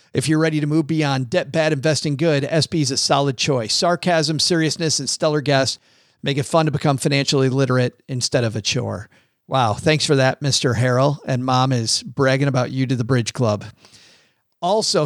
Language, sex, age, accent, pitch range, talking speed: English, male, 40-59, American, 125-150 Hz, 190 wpm